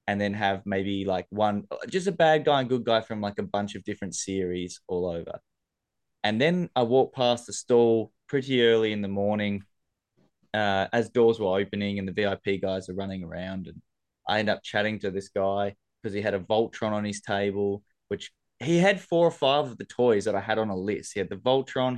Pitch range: 100-115 Hz